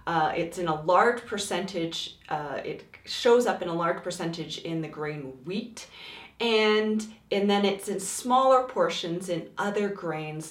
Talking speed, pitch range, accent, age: 160 wpm, 170-220 Hz, American, 30-49